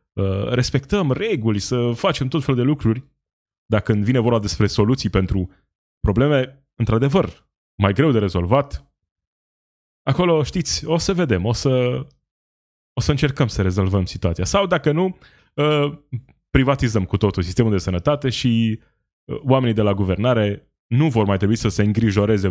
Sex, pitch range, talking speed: male, 95-130 Hz, 145 wpm